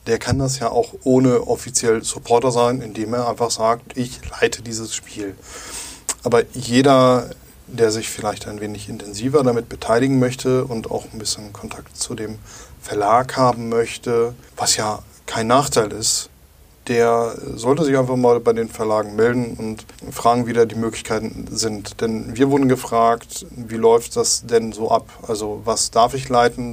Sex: male